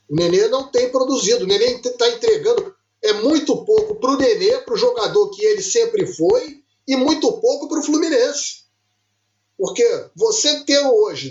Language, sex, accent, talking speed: Portuguese, male, Brazilian, 170 wpm